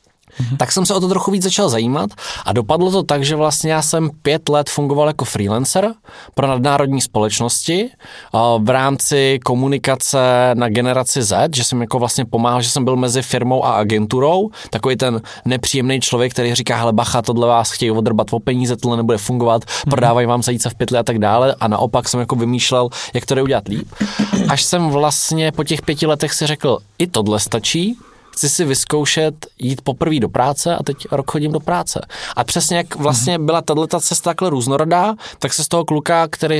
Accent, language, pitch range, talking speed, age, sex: native, Czech, 125-155 Hz, 195 wpm, 20-39, male